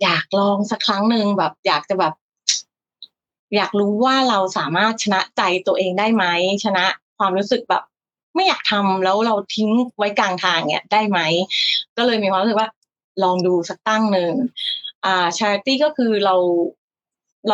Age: 20-39